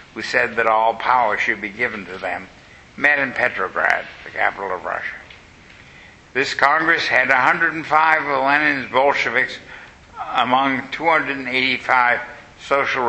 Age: 60-79